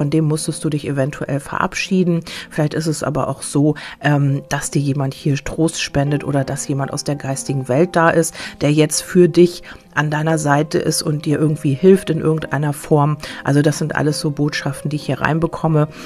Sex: female